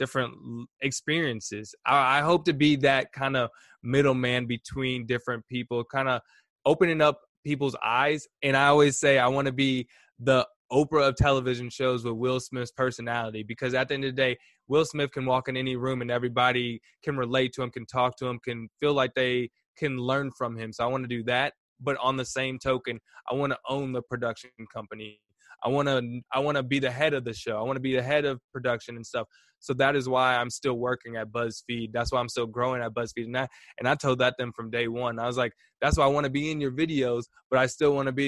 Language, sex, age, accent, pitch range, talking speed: English, male, 20-39, American, 120-140 Hz, 240 wpm